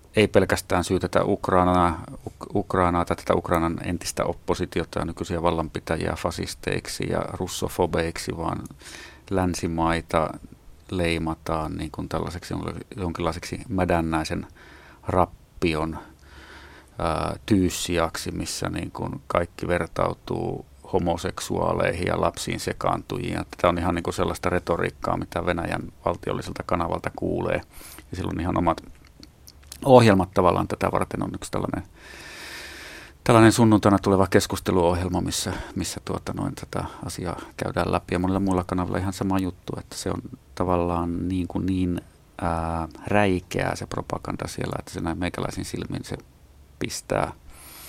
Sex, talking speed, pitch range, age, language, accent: male, 115 wpm, 85-95 Hz, 30-49, Finnish, native